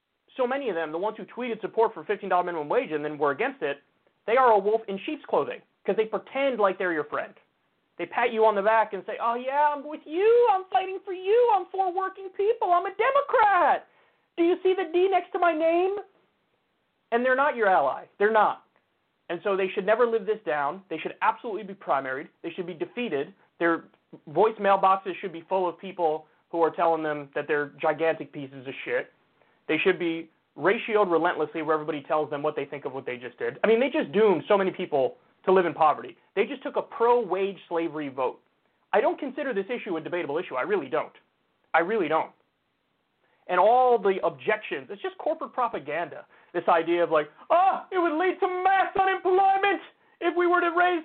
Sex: male